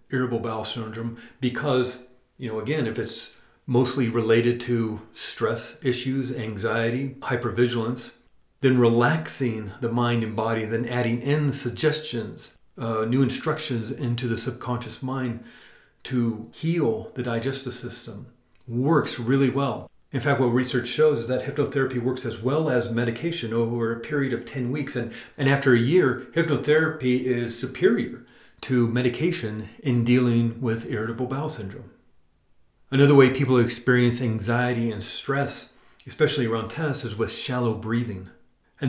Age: 40-59